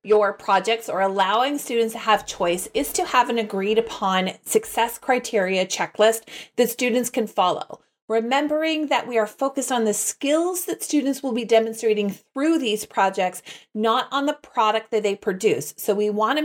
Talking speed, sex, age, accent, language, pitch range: 170 wpm, female, 30-49, American, English, 210-260 Hz